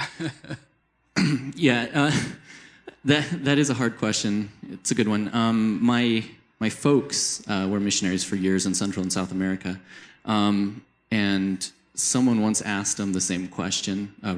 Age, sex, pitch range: 30-49, male, 90-110 Hz